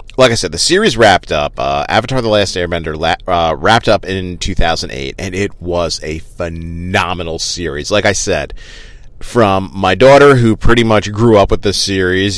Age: 40-59